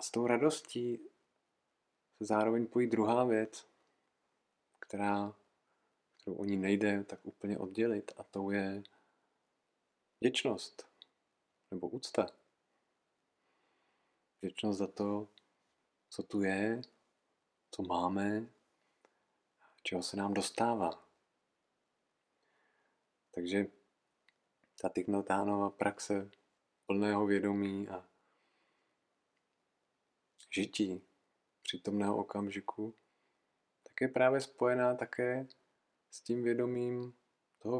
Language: Czech